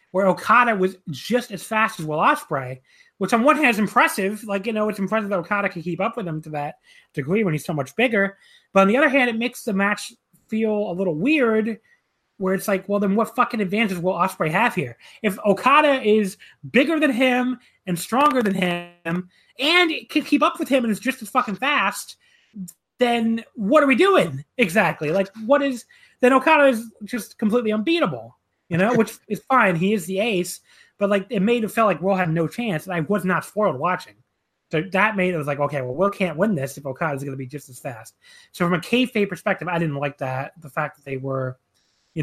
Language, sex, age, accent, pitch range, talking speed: English, male, 30-49, American, 160-225 Hz, 225 wpm